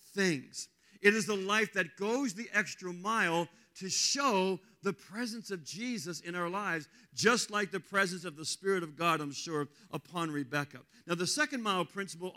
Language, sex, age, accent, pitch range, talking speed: English, male, 50-69, American, 160-215 Hz, 175 wpm